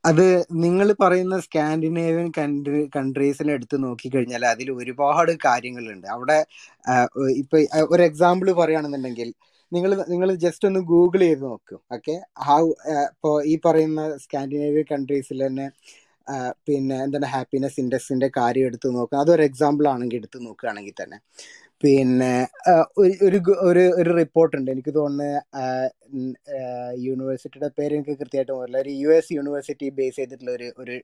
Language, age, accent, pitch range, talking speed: Malayalam, 20-39, native, 130-165 Hz, 115 wpm